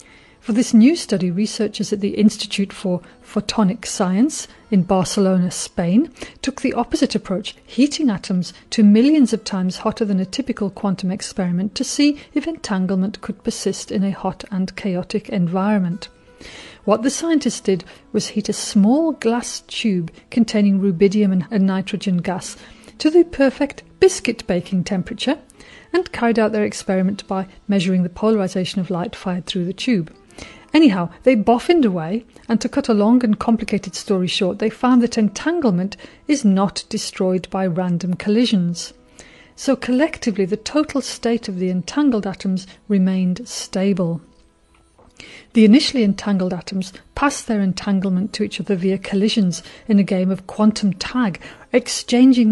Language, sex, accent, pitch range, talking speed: English, female, British, 190-235 Hz, 150 wpm